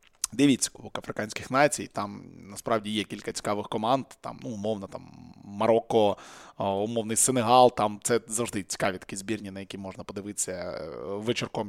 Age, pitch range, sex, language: 20-39, 115-160 Hz, male, Ukrainian